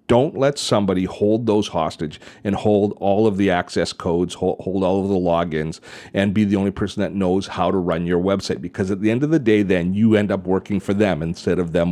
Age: 40-59